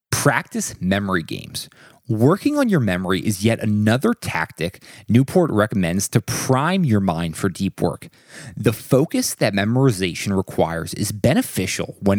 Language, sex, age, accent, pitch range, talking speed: English, male, 20-39, American, 95-135 Hz, 140 wpm